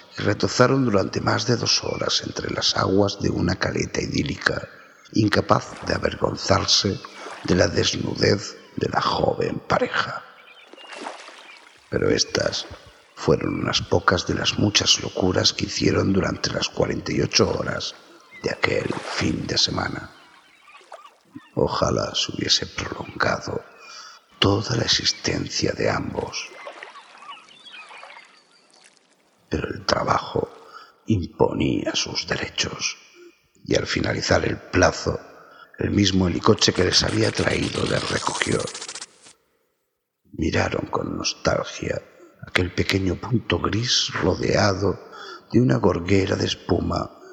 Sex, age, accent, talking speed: male, 60-79, Spanish, 110 wpm